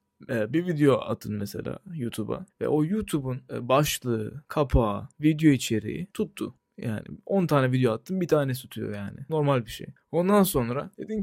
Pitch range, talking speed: 125-160 Hz, 150 wpm